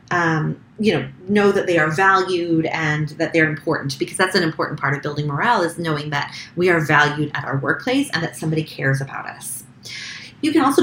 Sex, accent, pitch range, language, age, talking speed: female, American, 150-205 Hz, English, 30-49, 210 wpm